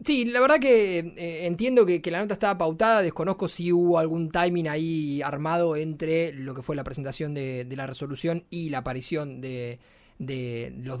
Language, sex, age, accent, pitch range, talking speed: Spanish, male, 20-39, Argentinian, 150-200 Hz, 190 wpm